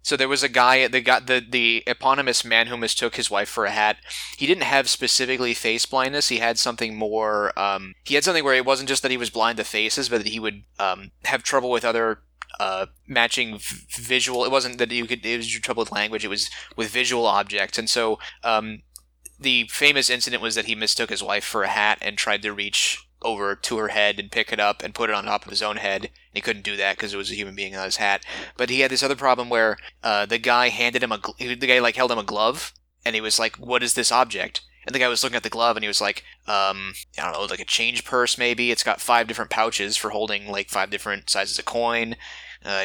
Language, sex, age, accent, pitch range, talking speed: English, male, 20-39, American, 105-125 Hz, 265 wpm